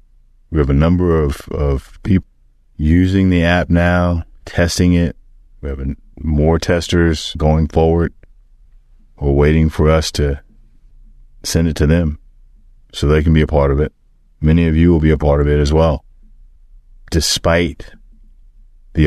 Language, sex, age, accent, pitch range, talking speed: English, male, 30-49, American, 70-85 Hz, 155 wpm